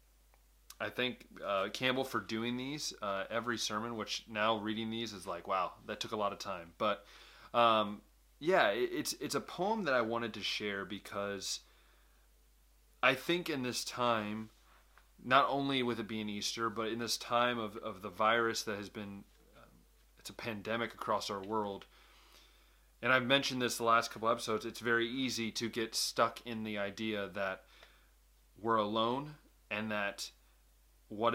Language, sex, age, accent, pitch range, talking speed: English, male, 30-49, American, 100-120 Hz, 170 wpm